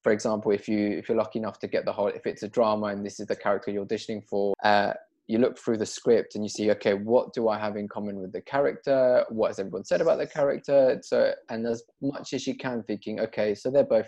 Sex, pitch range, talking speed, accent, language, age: male, 105-130 Hz, 275 wpm, British, English, 20-39